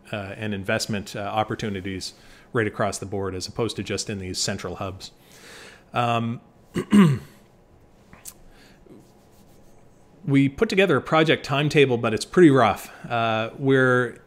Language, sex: English, male